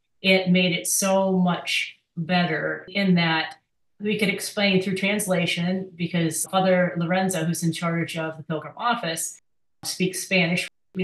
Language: English